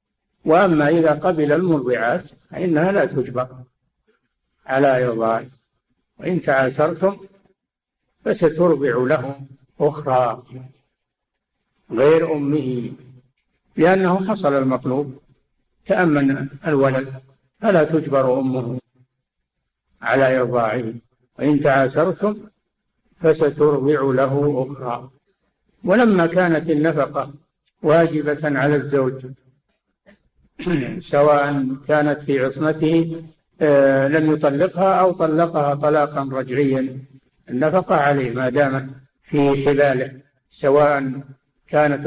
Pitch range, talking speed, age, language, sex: 130-160 Hz, 80 wpm, 60-79, Arabic, male